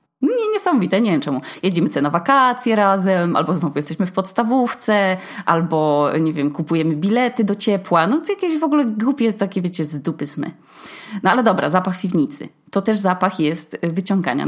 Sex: female